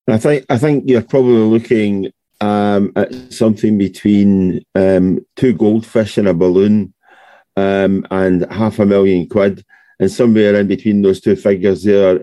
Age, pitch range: 40-59, 95-110 Hz